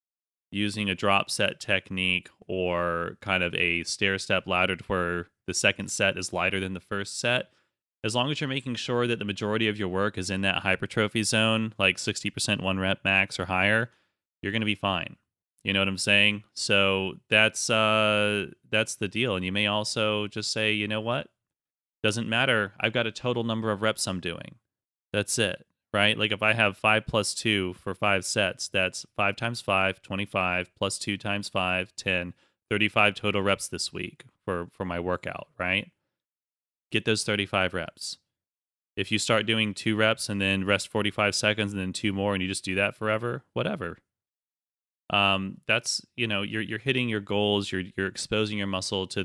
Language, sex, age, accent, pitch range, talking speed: English, male, 30-49, American, 95-110 Hz, 190 wpm